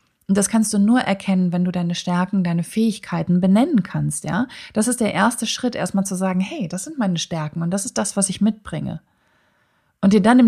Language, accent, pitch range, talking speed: German, German, 175-215 Hz, 220 wpm